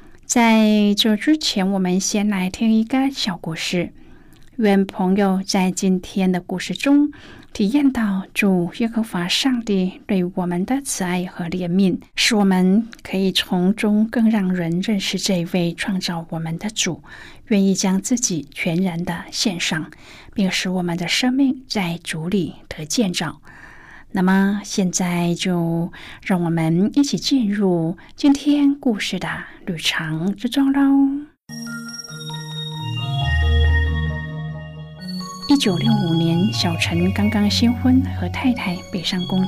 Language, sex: Chinese, female